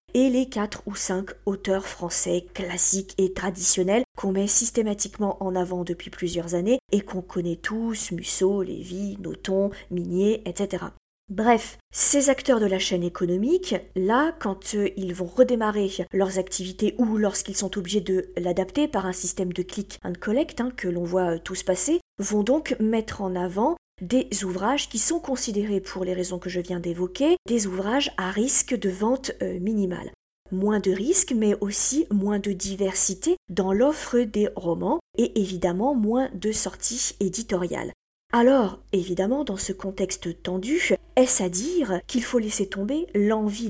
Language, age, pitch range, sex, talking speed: French, 40-59, 185-240 Hz, female, 160 wpm